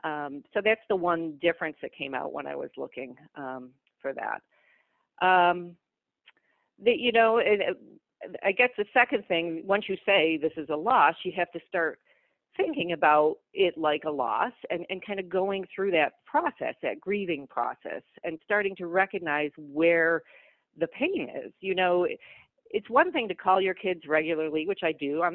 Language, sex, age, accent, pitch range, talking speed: English, female, 50-69, American, 160-205 Hz, 175 wpm